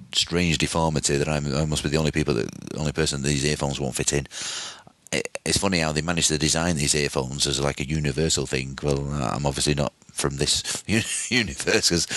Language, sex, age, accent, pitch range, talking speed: English, male, 30-49, British, 70-80 Hz, 205 wpm